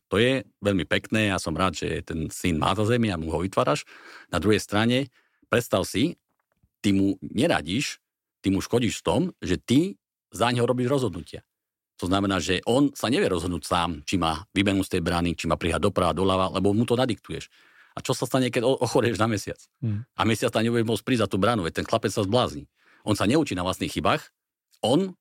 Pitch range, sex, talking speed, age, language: 95-120 Hz, male, 210 wpm, 50-69, Slovak